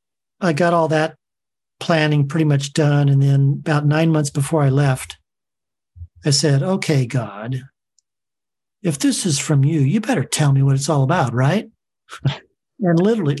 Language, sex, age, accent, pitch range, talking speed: English, male, 40-59, American, 140-170 Hz, 160 wpm